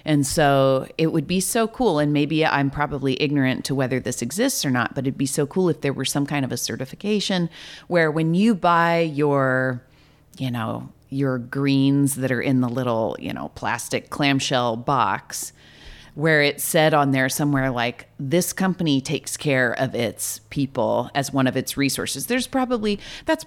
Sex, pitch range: female, 130-160 Hz